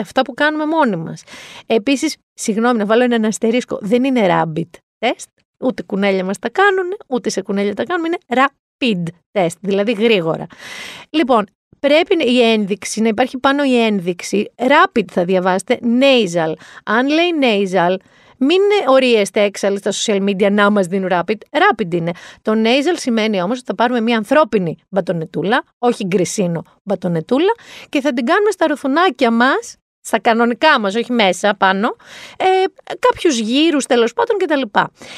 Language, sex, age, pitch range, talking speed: Greek, female, 40-59, 205-315 Hz, 155 wpm